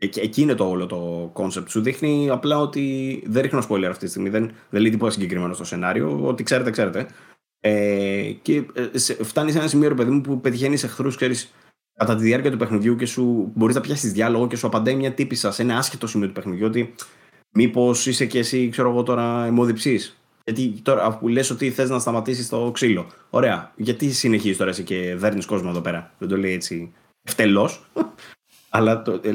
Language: Greek